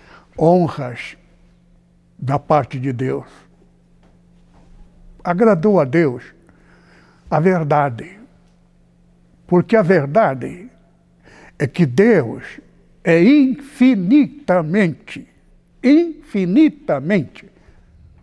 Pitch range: 115-185 Hz